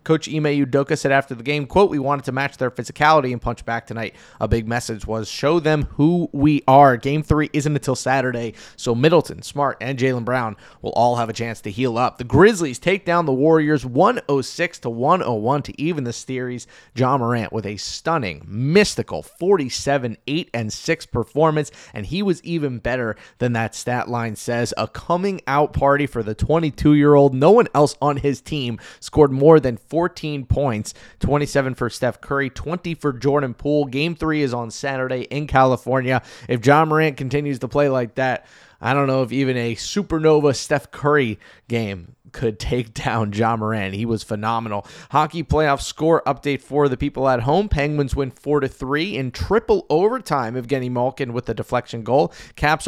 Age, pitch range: 30-49, 120-150 Hz